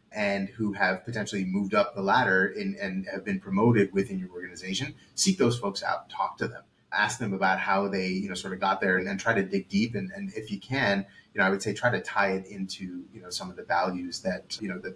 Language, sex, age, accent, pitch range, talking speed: English, male, 30-49, American, 95-125 Hz, 260 wpm